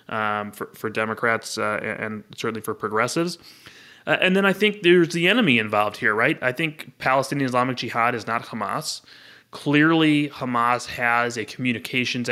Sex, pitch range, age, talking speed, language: male, 110-130 Hz, 20-39, 160 wpm, English